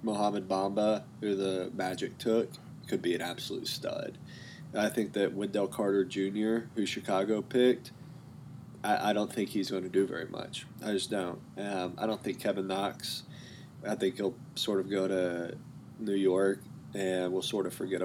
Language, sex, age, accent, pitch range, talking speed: English, male, 20-39, American, 95-110 Hz, 175 wpm